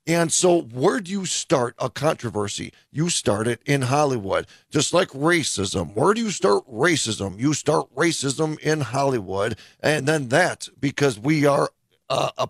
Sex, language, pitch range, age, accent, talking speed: male, English, 135-180 Hz, 40-59, American, 165 wpm